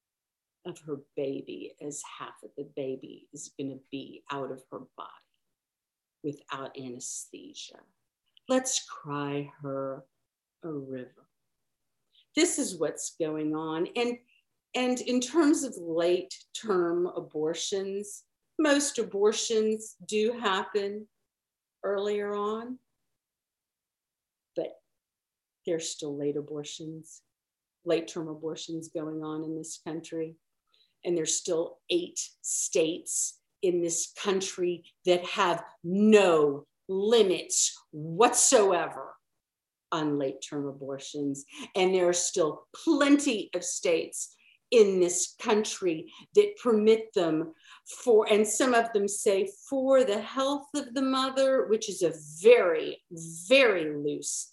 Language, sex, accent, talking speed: English, female, American, 110 wpm